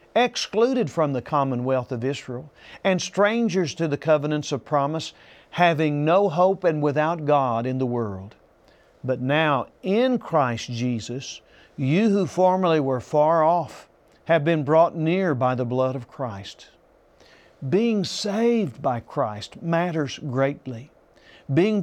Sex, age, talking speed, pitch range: male, 50-69, 135 wpm, 135-185 Hz